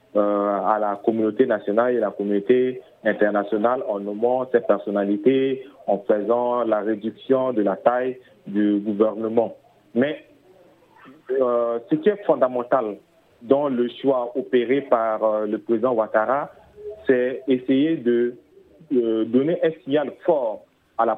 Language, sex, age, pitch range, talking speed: French, male, 40-59, 115-155 Hz, 135 wpm